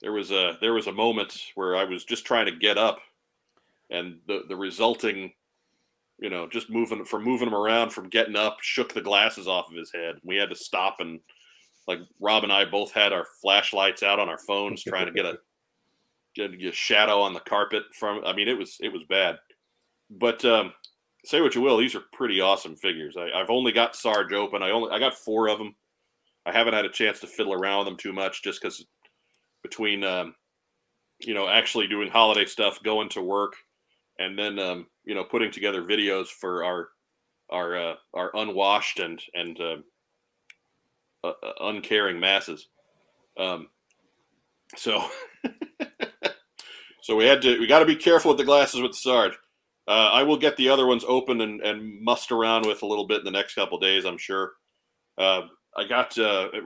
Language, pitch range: English, 95-120 Hz